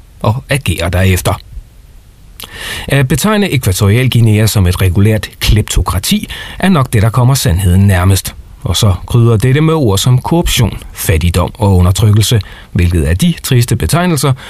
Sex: male